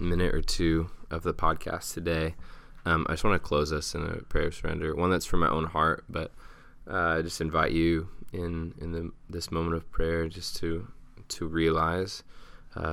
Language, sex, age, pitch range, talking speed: English, male, 20-39, 80-90 Hz, 200 wpm